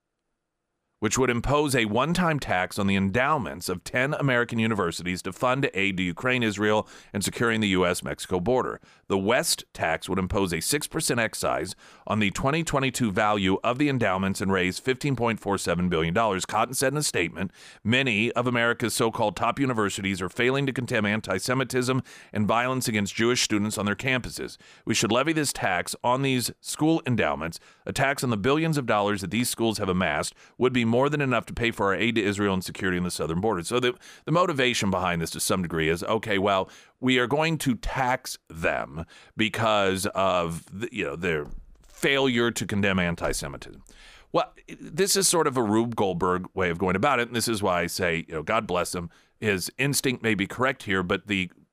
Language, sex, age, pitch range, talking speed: English, male, 40-59, 95-130 Hz, 195 wpm